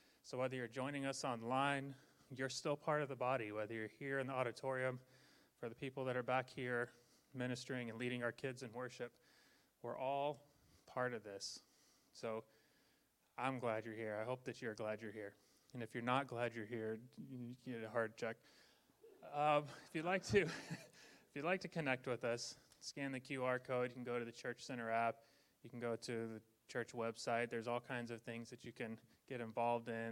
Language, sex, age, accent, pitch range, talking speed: English, male, 30-49, American, 115-135 Hz, 205 wpm